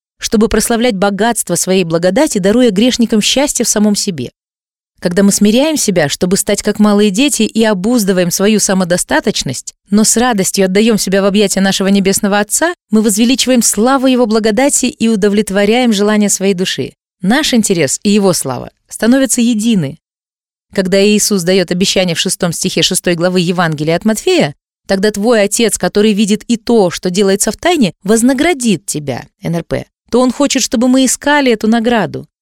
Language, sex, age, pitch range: Russian, female, 20-39, 190-255 Hz